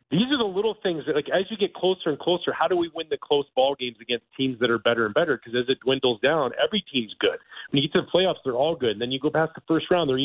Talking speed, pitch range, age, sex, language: 315 wpm, 130-180 Hz, 30-49, male, English